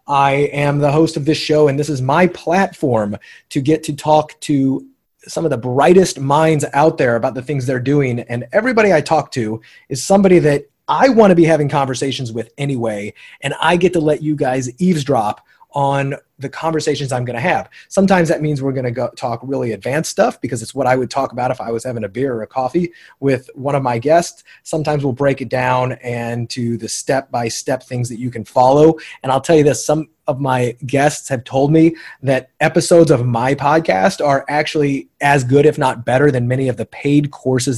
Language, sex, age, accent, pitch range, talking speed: English, male, 30-49, American, 125-155 Hz, 220 wpm